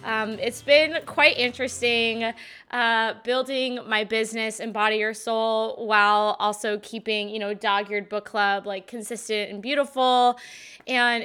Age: 20-39